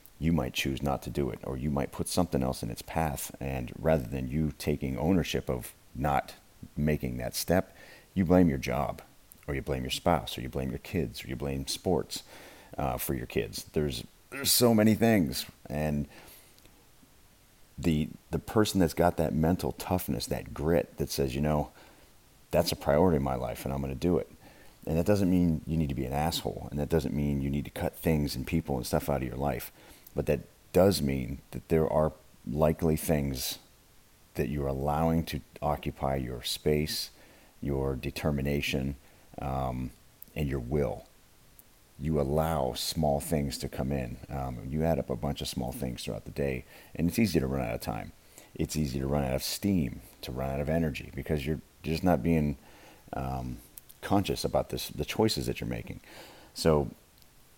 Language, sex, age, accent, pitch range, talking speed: English, male, 40-59, American, 65-80 Hz, 190 wpm